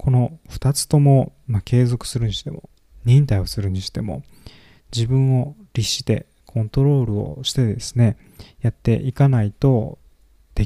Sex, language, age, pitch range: male, Japanese, 20-39, 105-135 Hz